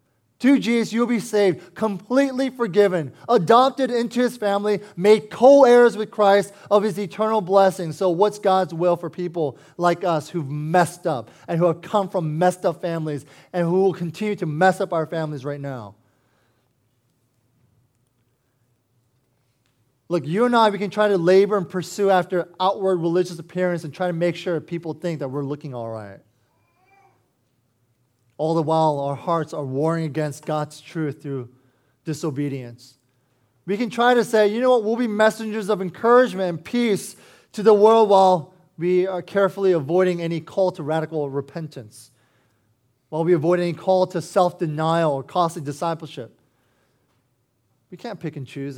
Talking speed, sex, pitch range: 160 wpm, male, 130-195 Hz